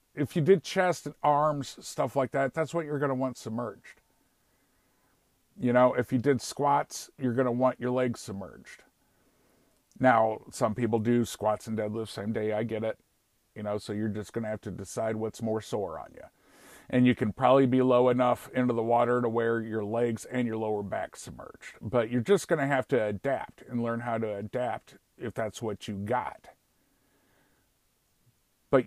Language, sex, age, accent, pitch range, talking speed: English, male, 50-69, American, 110-135 Hz, 195 wpm